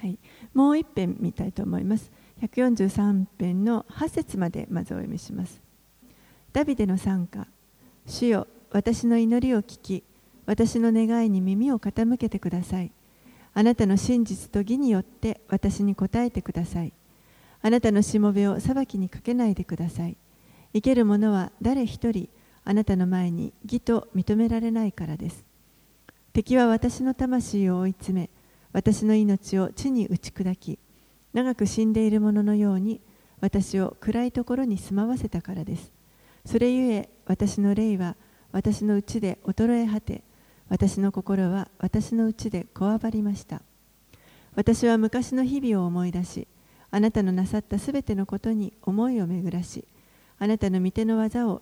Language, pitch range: Japanese, 190-230 Hz